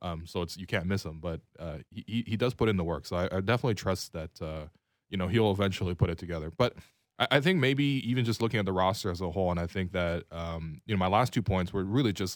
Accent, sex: American, male